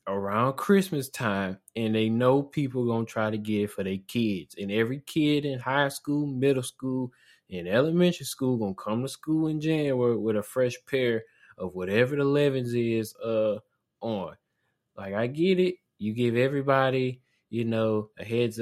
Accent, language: American, English